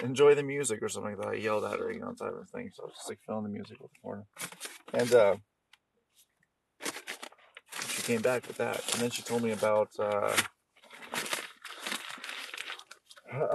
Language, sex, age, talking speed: English, male, 30-49, 180 wpm